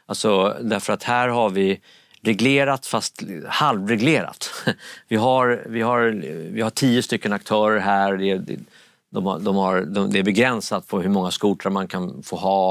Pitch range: 95-120 Hz